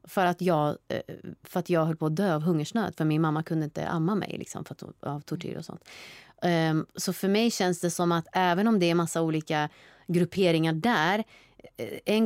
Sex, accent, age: female, native, 30-49